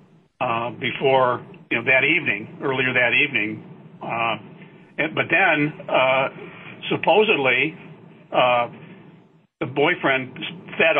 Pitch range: 130-175 Hz